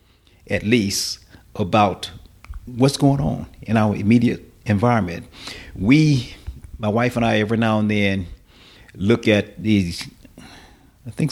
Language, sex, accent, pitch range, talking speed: English, male, American, 100-120 Hz, 125 wpm